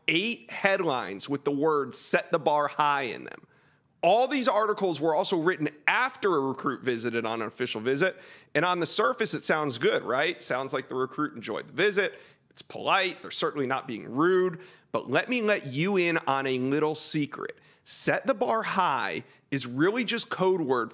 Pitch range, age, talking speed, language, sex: 140-200 Hz, 30-49, 190 wpm, English, male